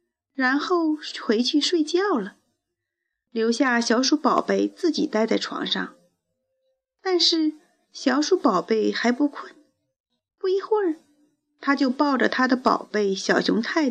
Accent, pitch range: native, 235-320 Hz